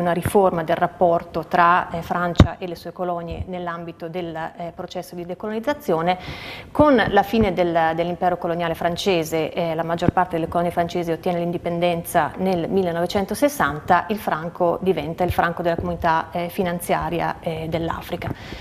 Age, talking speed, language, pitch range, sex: 30-49, 145 wpm, Italian, 170-190 Hz, female